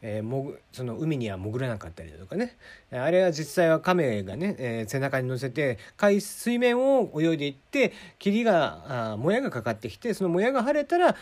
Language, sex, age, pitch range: Japanese, male, 40-59, 115-190 Hz